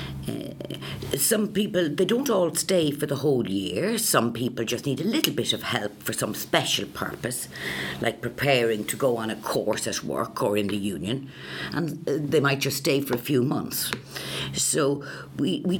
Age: 60-79